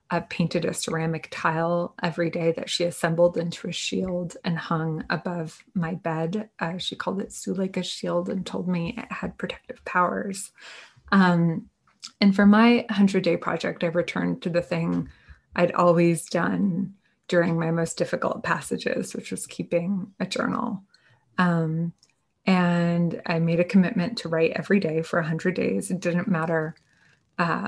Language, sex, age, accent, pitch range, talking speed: English, female, 20-39, American, 165-195 Hz, 155 wpm